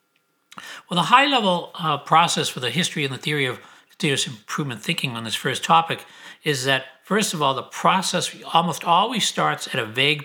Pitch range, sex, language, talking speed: 135-175 Hz, male, English, 180 wpm